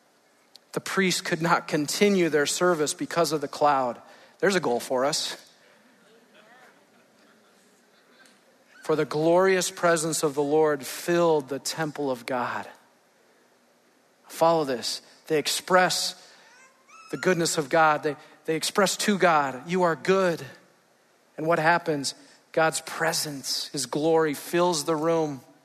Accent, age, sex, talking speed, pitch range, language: American, 40-59, male, 125 wpm, 150-175 Hz, English